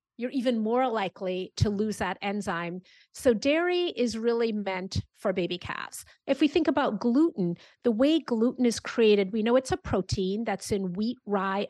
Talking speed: 180 wpm